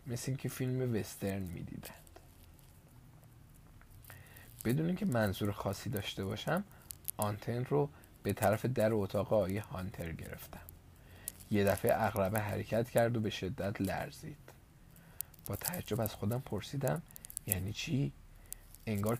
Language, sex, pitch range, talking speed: Persian, male, 100-120 Hz, 120 wpm